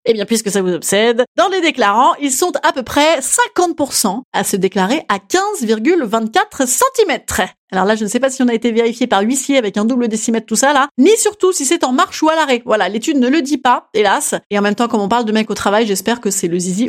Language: French